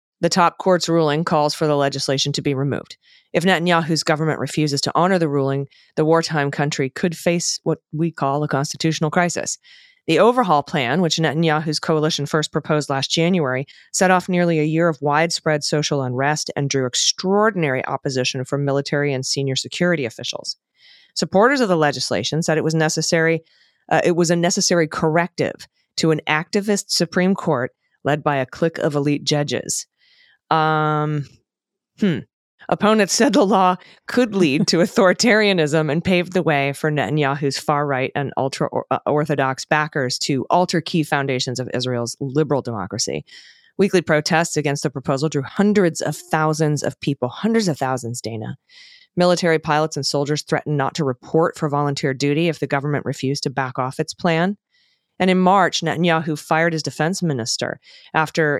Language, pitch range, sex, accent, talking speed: English, 140-175 Hz, female, American, 160 wpm